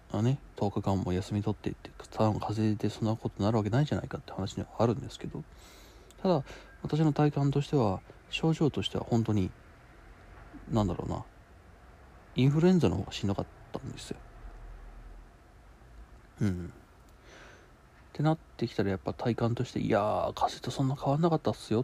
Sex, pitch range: male, 100-140 Hz